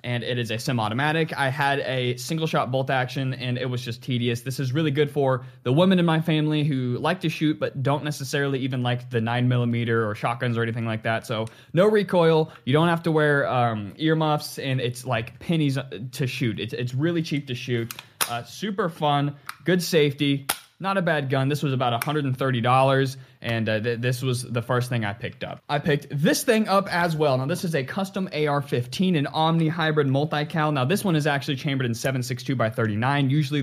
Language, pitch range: English, 125-155 Hz